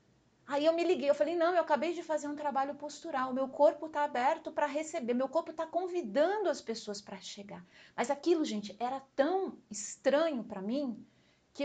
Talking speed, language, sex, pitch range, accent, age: 190 wpm, English, female, 215-315 Hz, Brazilian, 40-59